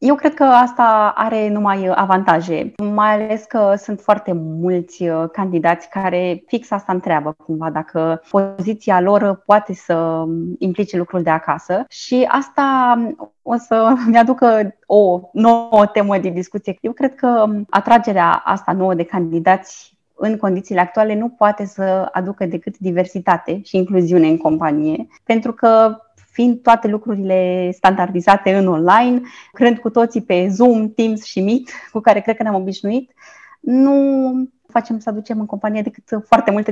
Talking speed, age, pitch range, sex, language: 145 wpm, 20-39, 185-230 Hz, female, Romanian